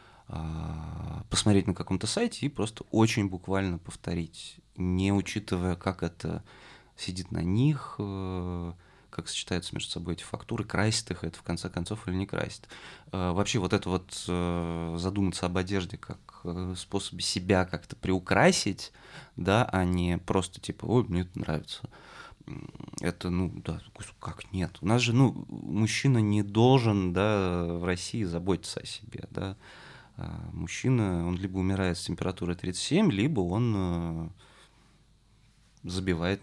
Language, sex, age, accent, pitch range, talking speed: Russian, male, 20-39, native, 85-100 Hz, 135 wpm